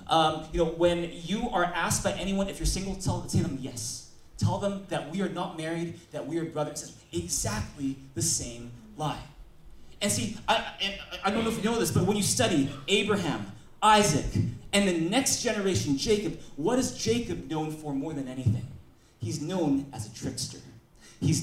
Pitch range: 135-190 Hz